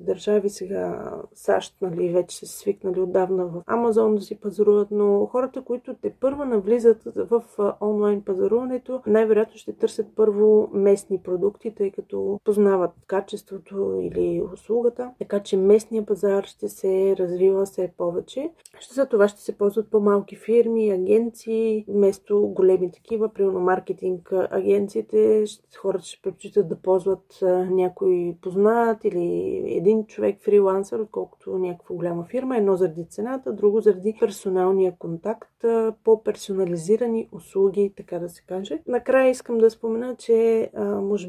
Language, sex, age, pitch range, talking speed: Bulgarian, female, 40-59, 195-225 Hz, 130 wpm